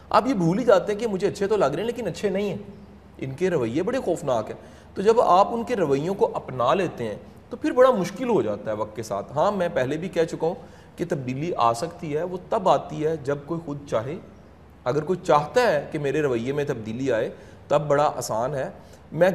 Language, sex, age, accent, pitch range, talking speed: English, male, 30-49, Indian, 125-175 Hz, 235 wpm